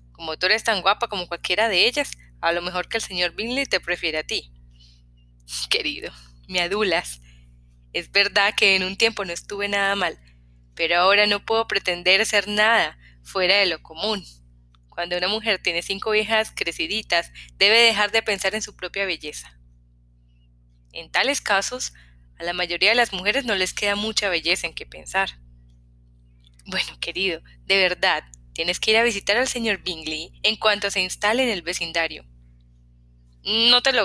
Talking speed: 175 wpm